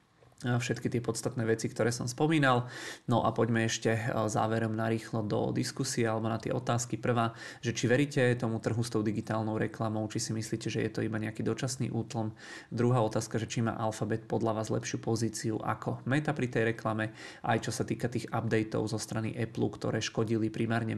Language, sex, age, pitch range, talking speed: Czech, male, 30-49, 110-120 Hz, 190 wpm